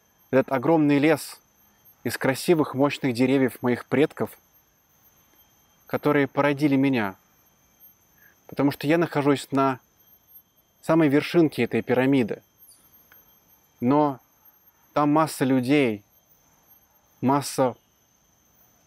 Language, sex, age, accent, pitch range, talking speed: Russian, male, 20-39, native, 125-145 Hz, 85 wpm